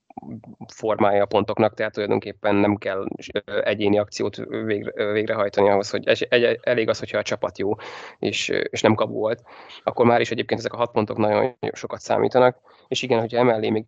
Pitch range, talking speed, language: 110-125 Hz, 165 wpm, Hungarian